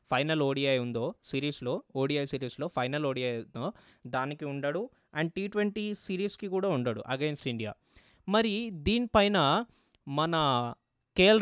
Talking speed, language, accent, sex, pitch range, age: 120 wpm, Telugu, native, male, 140-180 Hz, 20-39